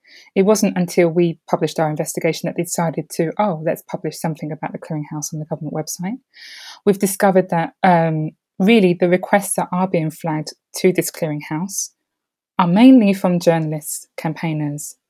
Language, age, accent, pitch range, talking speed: English, 20-39, British, 165-200 Hz, 165 wpm